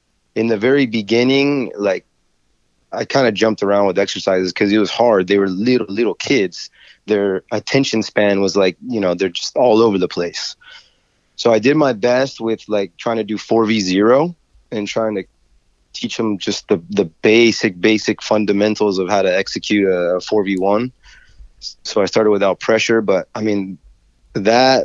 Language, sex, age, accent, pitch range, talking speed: English, male, 30-49, American, 100-120 Hz, 175 wpm